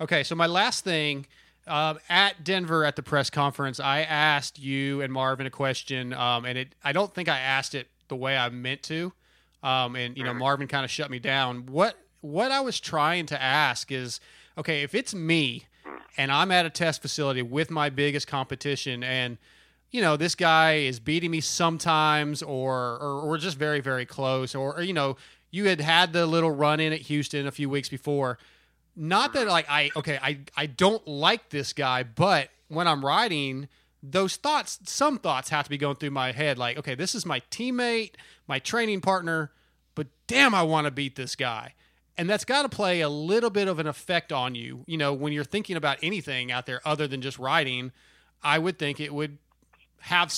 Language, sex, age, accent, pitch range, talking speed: English, male, 30-49, American, 135-170 Hz, 205 wpm